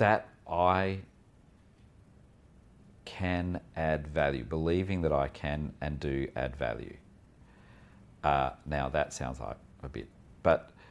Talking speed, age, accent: 115 wpm, 40-59, Australian